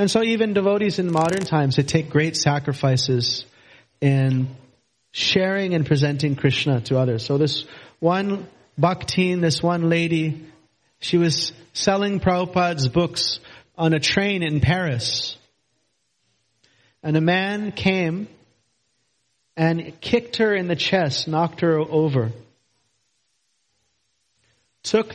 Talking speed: 115 wpm